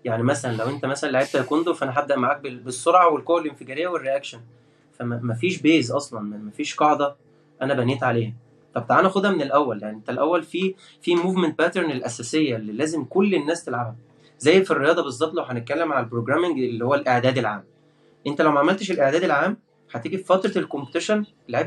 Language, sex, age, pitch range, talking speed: Arabic, male, 20-39, 125-165 Hz, 185 wpm